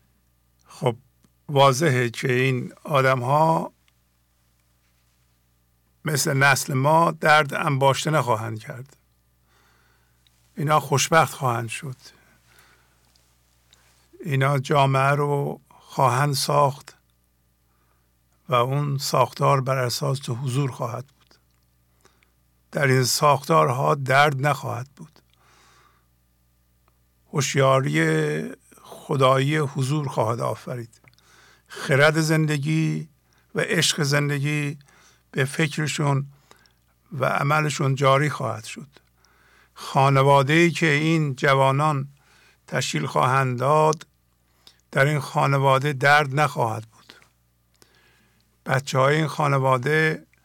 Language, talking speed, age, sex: English, 85 wpm, 50-69, male